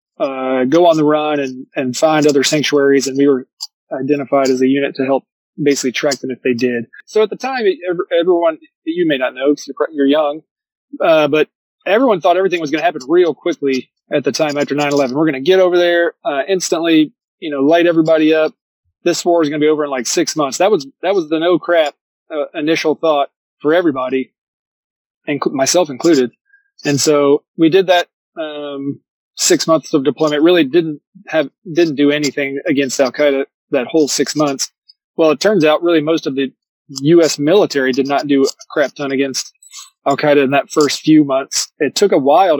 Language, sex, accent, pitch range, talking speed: English, male, American, 140-165 Hz, 205 wpm